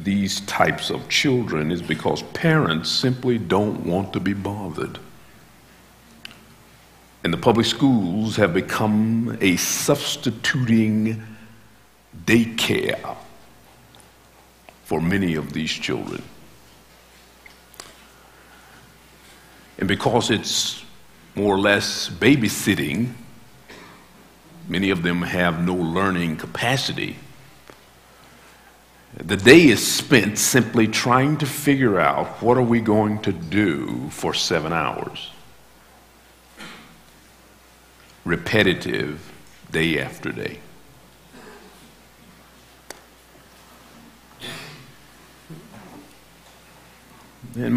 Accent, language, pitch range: American, English, 90-120 Hz